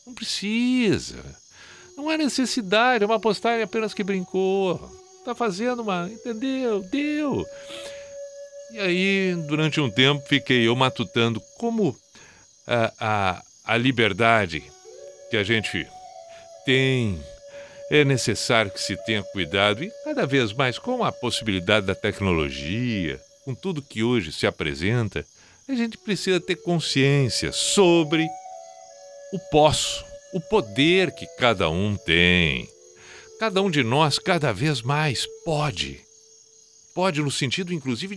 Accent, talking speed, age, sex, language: Brazilian, 125 wpm, 60-79, male, Portuguese